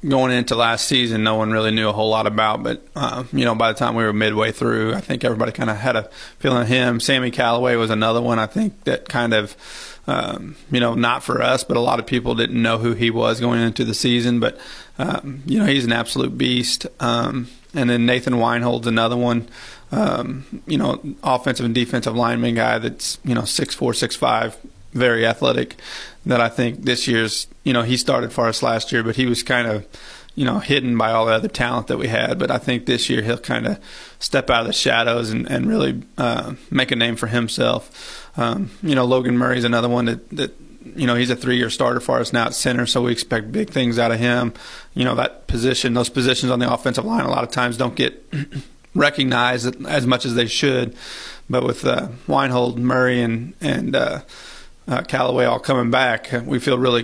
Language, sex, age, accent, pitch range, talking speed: English, male, 30-49, American, 115-125 Hz, 225 wpm